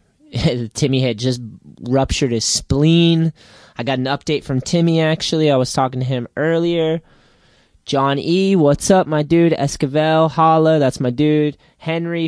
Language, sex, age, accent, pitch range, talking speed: English, male, 20-39, American, 125-160 Hz, 150 wpm